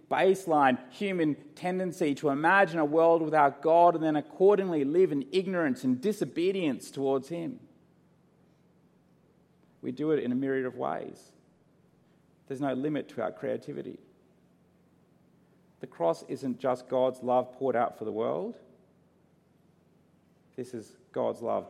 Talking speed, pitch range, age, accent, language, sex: 135 wpm, 105-150 Hz, 40-59, Australian, English, male